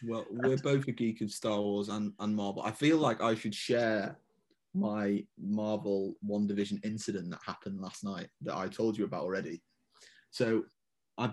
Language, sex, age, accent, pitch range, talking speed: English, male, 20-39, British, 105-130 Hz, 180 wpm